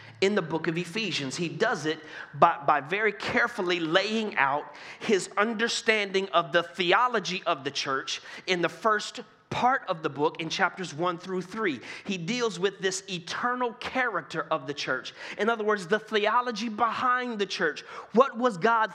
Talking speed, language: 170 wpm, English